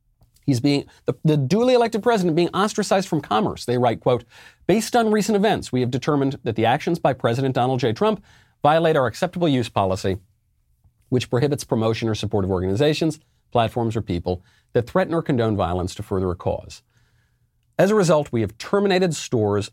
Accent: American